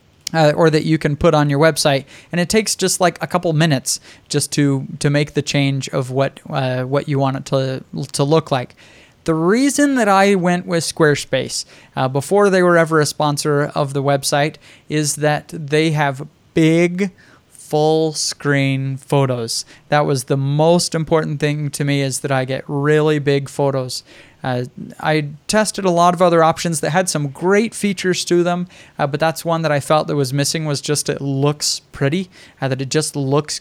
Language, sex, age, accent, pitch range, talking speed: English, male, 20-39, American, 140-165 Hz, 195 wpm